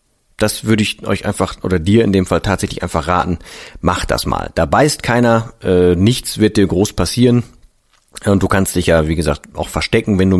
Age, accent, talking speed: 40-59, German, 210 wpm